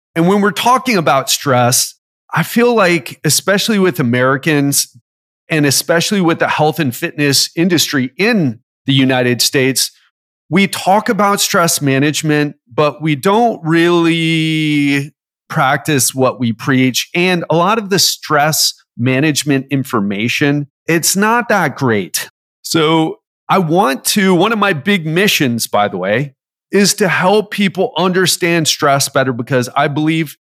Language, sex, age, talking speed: English, male, 40-59, 140 wpm